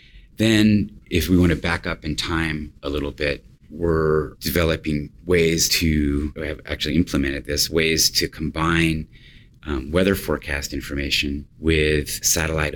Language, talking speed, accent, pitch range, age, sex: English, 140 wpm, American, 75-90 Hz, 30-49, male